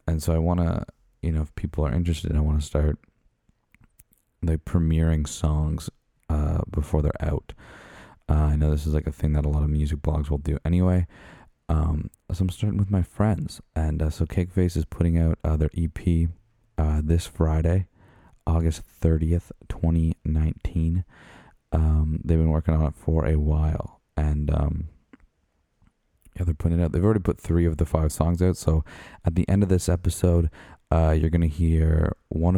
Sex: male